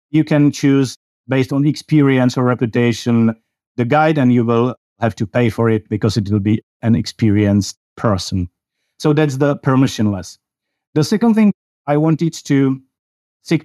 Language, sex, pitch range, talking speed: English, male, 115-145 Hz, 160 wpm